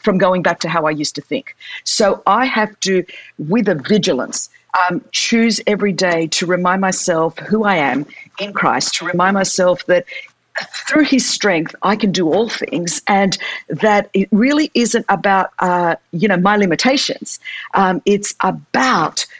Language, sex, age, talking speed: English, female, 50-69, 165 wpm